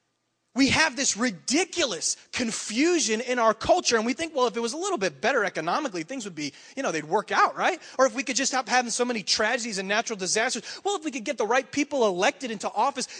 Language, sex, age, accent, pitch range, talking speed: English, male, 30-49, American, 200-265 Hz, 240 wpm